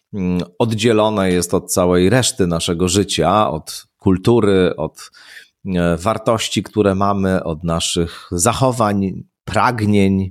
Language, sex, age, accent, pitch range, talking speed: Polish, male, 40-59, native, 90-110 Hz, 100 wpm